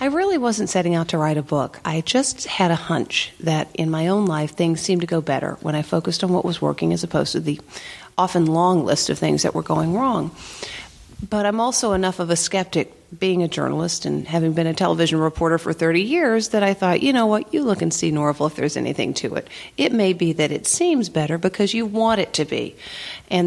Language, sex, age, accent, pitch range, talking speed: English, female, 40-59, American, 165-225 Hz, 240 wpm